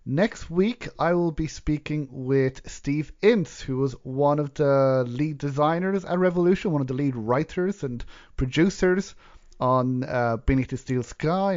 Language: English